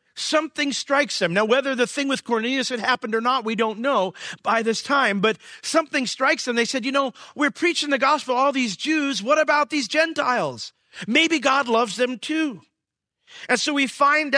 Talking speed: 195 wpm